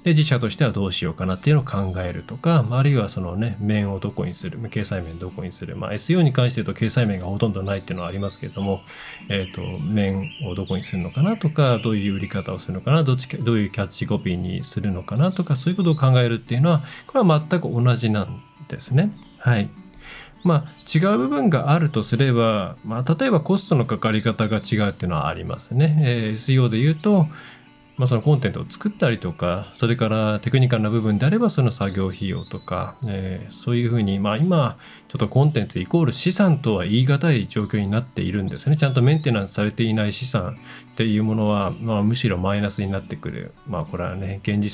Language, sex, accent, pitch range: Japanese, male, native, 100-140 Hz